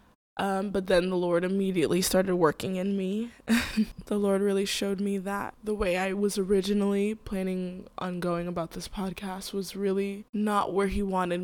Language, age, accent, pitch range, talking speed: English, 20-39, American, 180-205 Hz, 175 wpm